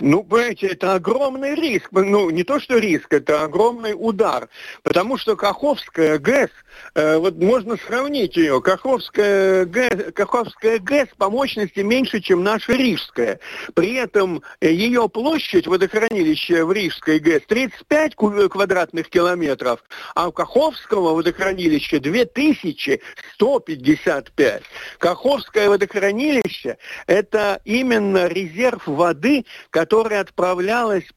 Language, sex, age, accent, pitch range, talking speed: Russian, male, 60-79, native, 185-250 Hz, 110 wpm